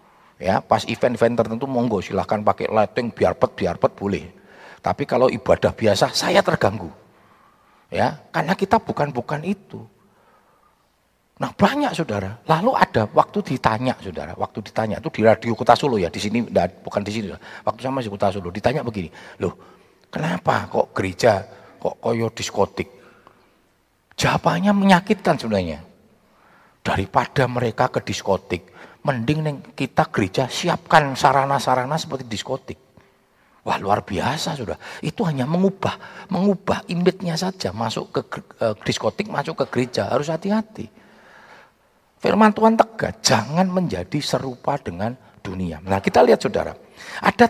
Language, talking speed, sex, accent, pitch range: Indonesian, 135 wpm, male, native, 110-175 Hz